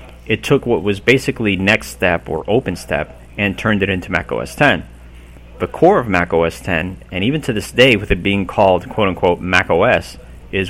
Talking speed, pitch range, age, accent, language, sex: 210 wpm, 70-105 Hz, 30-49, American, English, male